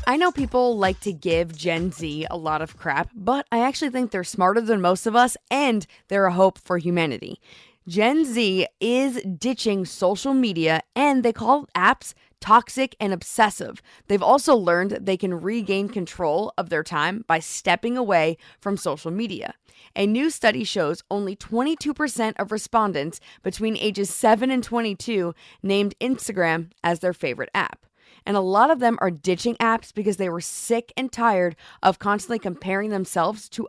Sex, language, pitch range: female, English, 185-235 Hz